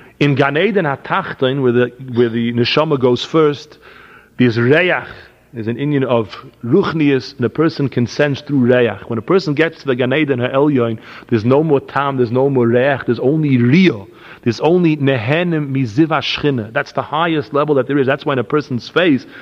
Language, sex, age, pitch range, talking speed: English, male, 40-59, 135-175 Hz, 190 wpm